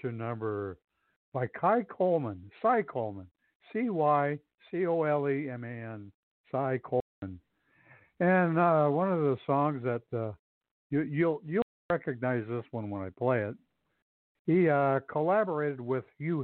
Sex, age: male, 60-79